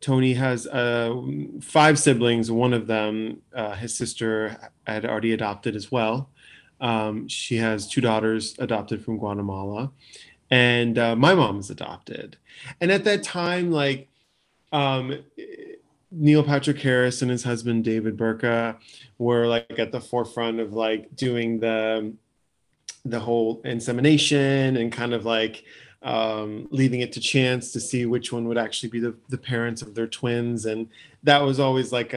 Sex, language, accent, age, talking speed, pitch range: male, English, American, 20-39, 155 wpm, 115-140 Hz